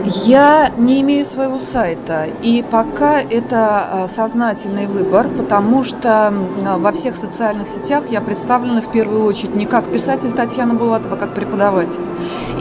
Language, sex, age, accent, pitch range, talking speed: Russian, female, 30-49, native, 200-245 Hz, 140 wpm